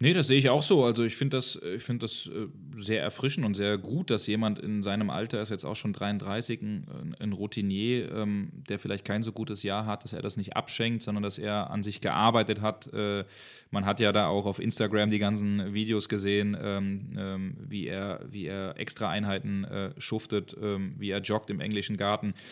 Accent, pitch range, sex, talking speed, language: German, 100-120 Hz, male, 210 wpm, German